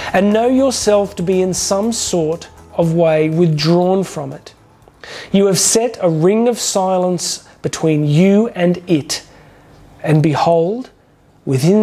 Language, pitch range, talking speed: English, 155-185 Hz, 135 wpm